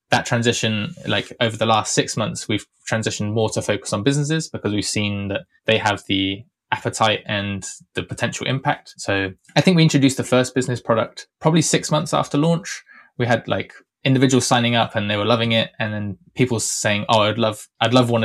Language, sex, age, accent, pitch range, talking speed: English, male, 20-39, British, 105-130 Hz, 205 wpm